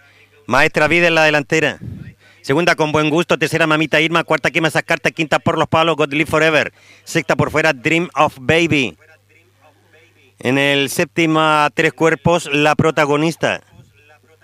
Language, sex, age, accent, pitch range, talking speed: Spanish, male, 50-69, Spanish, 145-185 Hz, 150 wpm